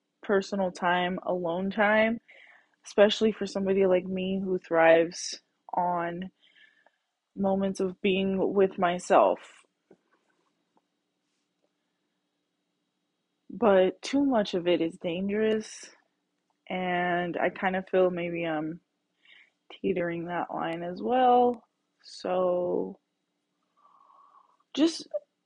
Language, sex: English, female